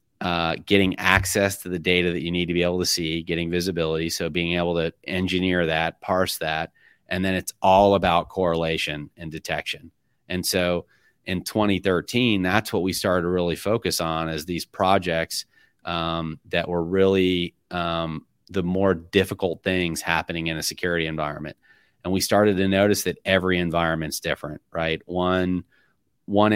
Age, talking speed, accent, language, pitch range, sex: 30-49, 165 wpm, American, English, 85-95 Hz, male